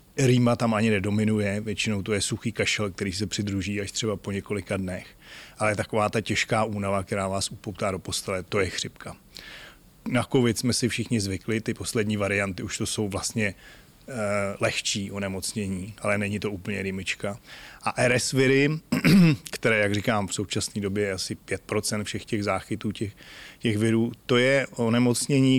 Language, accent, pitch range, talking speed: Czech, native, 100-115 Hz, 165 wpm